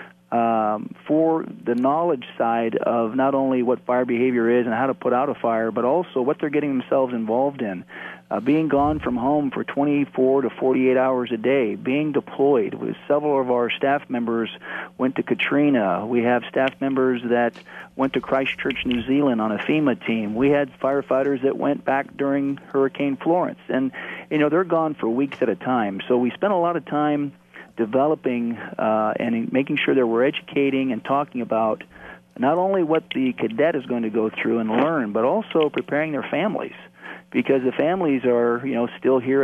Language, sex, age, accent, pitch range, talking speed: English, male, 40-59, American, 120-140 Hz, 190 wpm